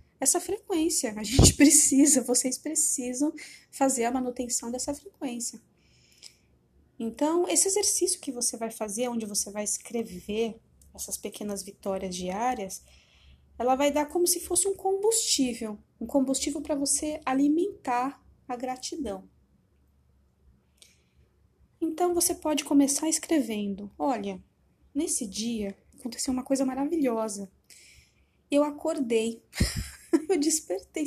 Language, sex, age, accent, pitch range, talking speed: Portuguese, female, 20-39, Brazilian, 215-290 Hz, 110 wpm